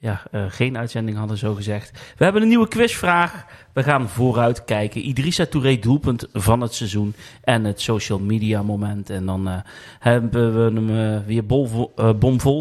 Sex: male